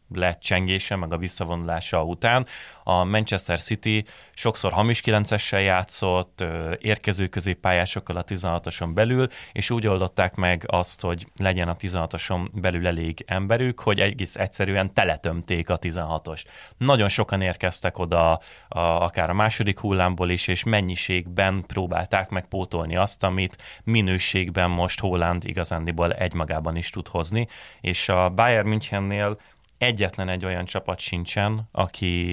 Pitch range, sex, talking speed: 85-100 Hz, male, 130 wpm